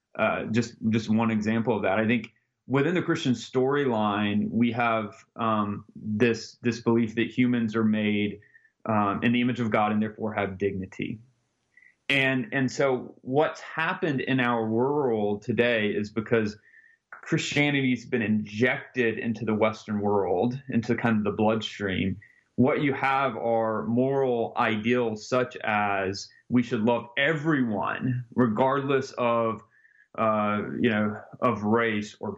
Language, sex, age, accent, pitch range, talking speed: English, male, 30-49, American, 110-130 Hz, 145 wpm